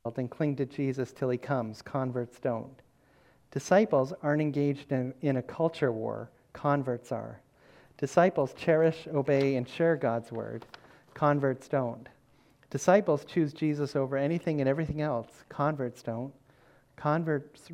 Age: 50-69